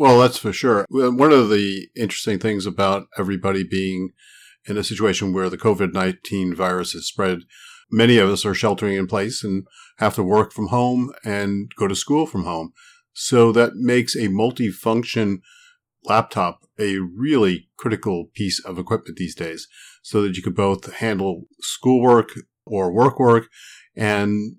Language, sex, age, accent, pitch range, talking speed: English, male, 50-69, American, 95-115 Hz, 160 wpm